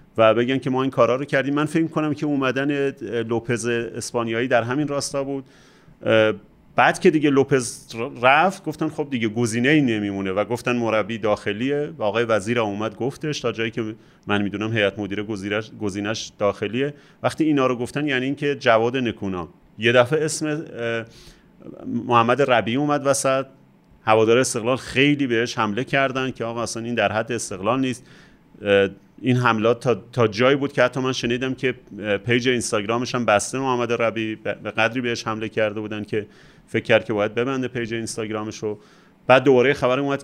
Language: Persian